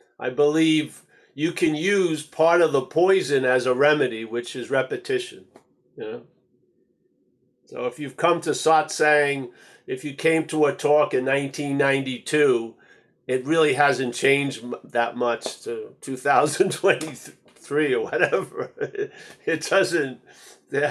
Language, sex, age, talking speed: English, male, 50-69, 125 wpm